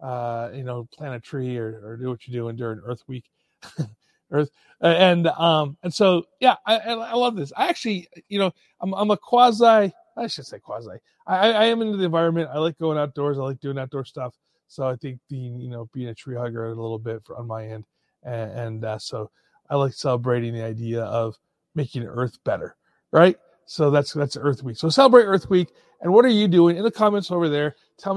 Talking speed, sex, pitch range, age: 220 wpm, male, 130-180 Hz, 30-49